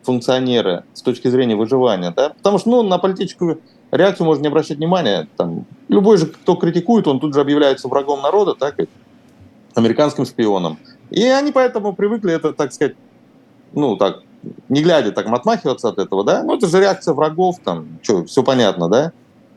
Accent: native